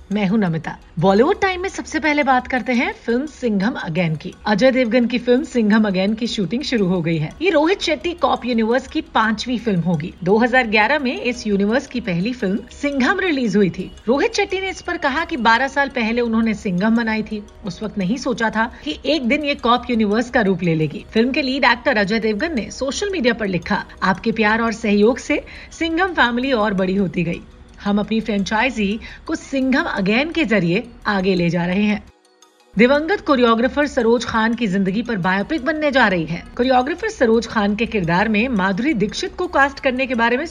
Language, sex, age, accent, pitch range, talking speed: Hindi, female, 40-59, native, 200-270 Hz, 205 wpm